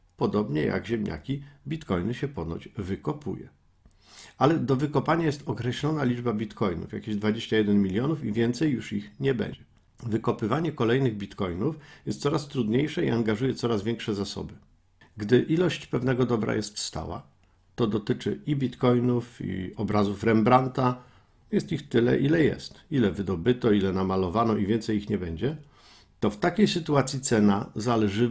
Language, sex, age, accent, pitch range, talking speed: Polish, male, 50-69, native, 100-140 Hz, 140 wpm